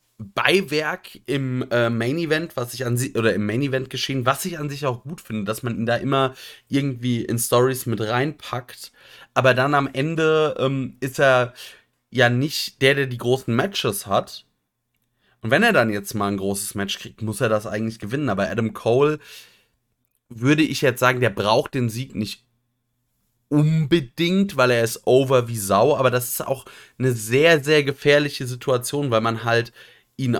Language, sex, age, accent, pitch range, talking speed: German, male, 30-49, German, 105-130 Hz, 175 wpm